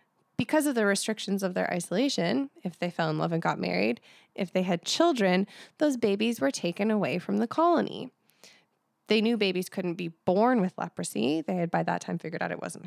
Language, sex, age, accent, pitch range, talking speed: English, female, 20-39, American, 170-220 Hz, 205 wpm